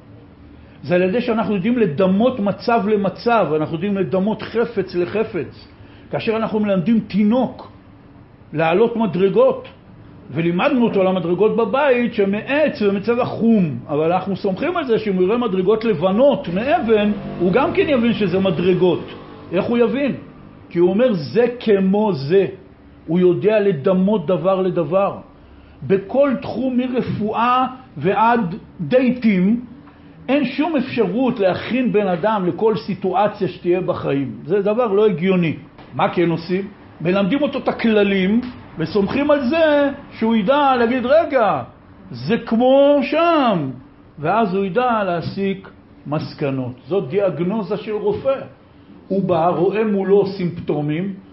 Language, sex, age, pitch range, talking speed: Hebrew, male, 60-79, 180-235 Hz, 125 wpm